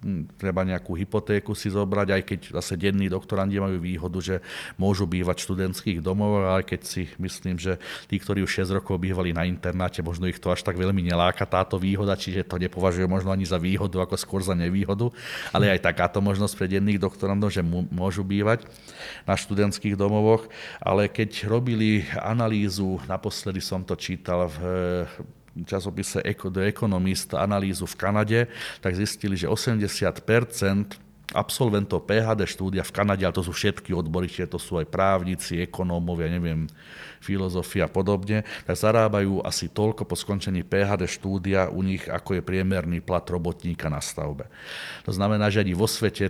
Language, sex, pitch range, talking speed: Slovak, male, 90-100 Hz, 160 wpm